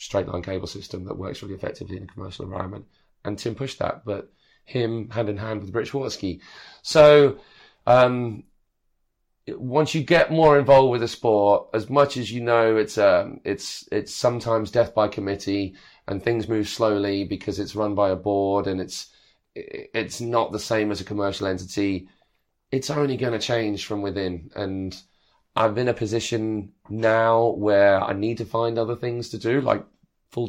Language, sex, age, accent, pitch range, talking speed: English, male, 30-49, British, 100-115 Hz, 180 wpm